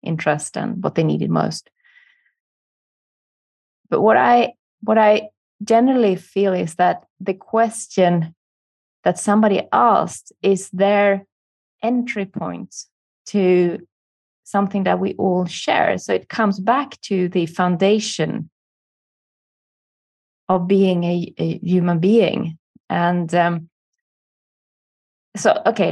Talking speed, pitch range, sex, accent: 110 wpm, 175-215 Hz, female, Swedish